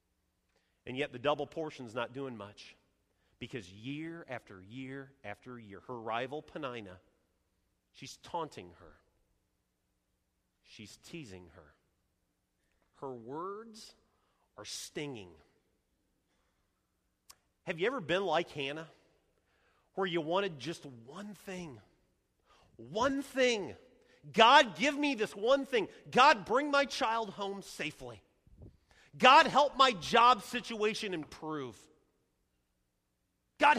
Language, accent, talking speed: English, American, 105 wpm